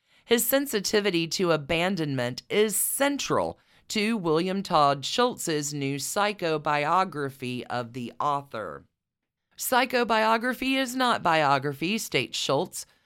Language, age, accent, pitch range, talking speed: English, 40-59, American, 145-215 Hz, 95 wpm